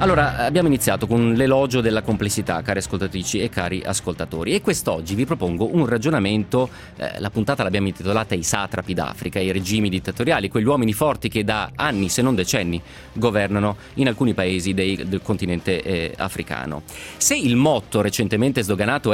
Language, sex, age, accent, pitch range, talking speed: Italian, male, 30-49, native, 95-130 Hz, 165 wpm